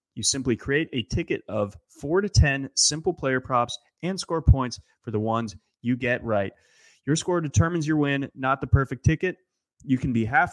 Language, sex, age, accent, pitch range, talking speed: English, male, 30-49, American, 115-150 Hz, 195 wpm